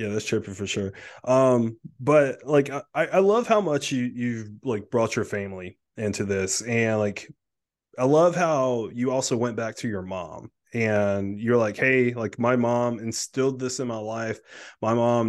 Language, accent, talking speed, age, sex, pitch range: English, American, 185 wpm, 20-39, male, 110-130 Hz